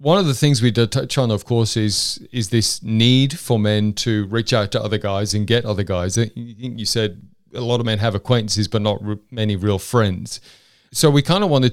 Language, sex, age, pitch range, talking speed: English, male, 30-49, 105-130 Hz, 225 wpm